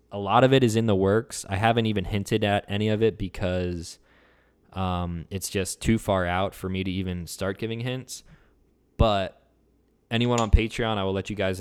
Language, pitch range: English, 90-105 Hz